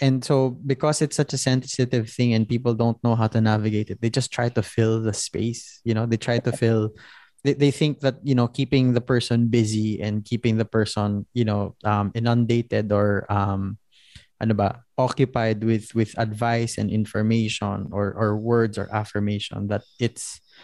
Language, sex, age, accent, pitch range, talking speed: English, male, 20-39, Filipino, 110-135 Hz, 185 wpm